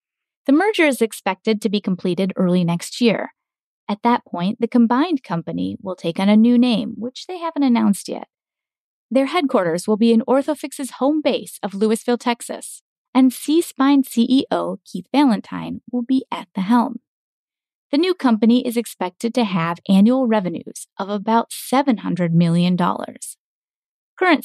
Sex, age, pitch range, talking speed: female, 30-49, 195-260 Hz, 150 wpm